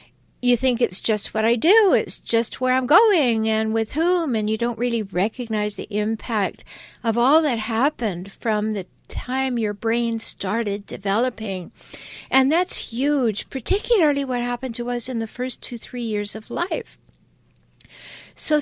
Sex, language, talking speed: female, English, 160 wpm